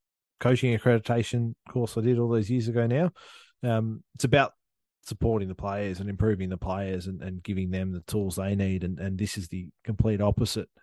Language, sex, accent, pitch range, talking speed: English, male, Australian, 95-115 Hz, 195 wpm